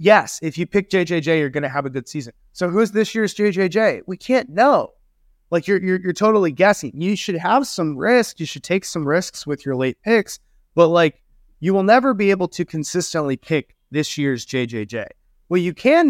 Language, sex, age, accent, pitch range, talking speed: English, male, 20-39, American, 155-215 Hz, 215 wpm